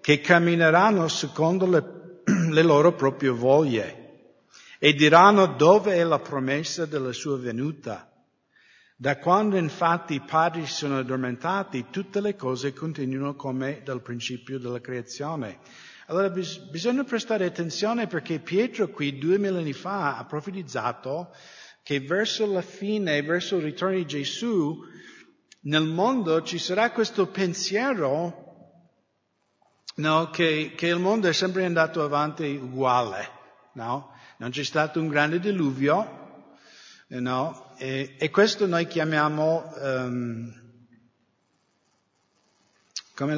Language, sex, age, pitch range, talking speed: English, male, 50-69, 125-170 Hz, 120 wpm